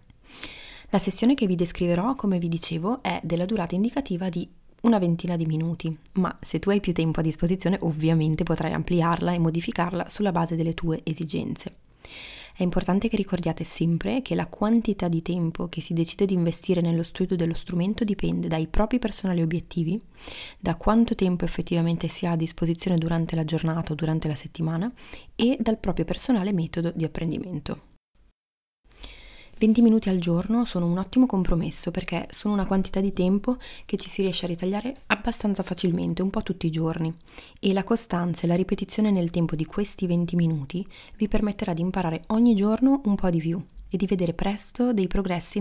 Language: Italian